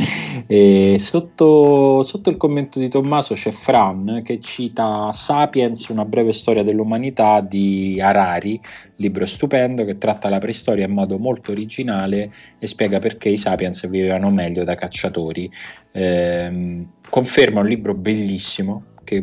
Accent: native